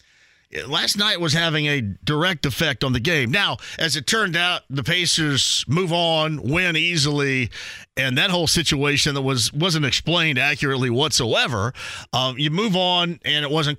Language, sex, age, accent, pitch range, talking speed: English, male, 40-59, American, 130-165 Hz, 165 wpm